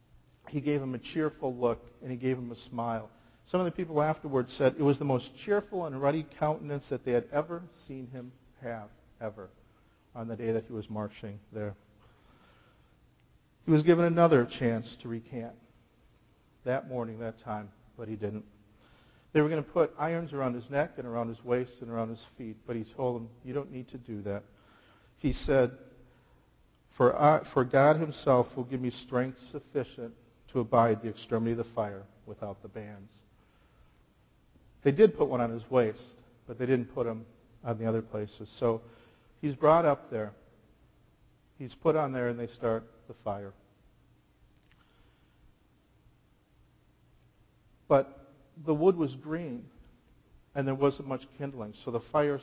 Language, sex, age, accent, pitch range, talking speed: English, male, 50-69, American, 115-140 Hz, 165 wpm